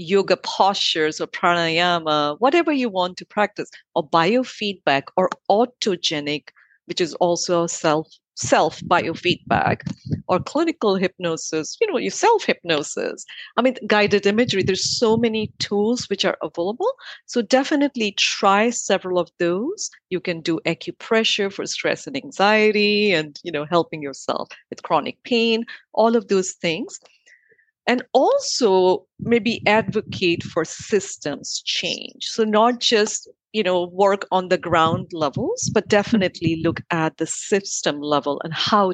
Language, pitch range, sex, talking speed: English, 165-220 Hz, female, 135 wpm